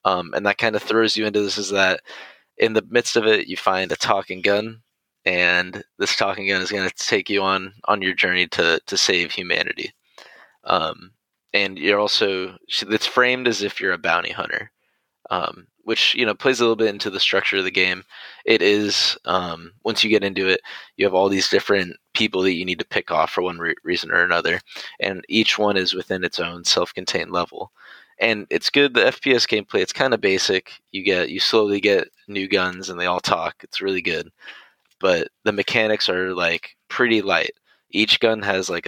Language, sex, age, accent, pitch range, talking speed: English, male, 20-39, American, 95-110 Hz, 205 wpm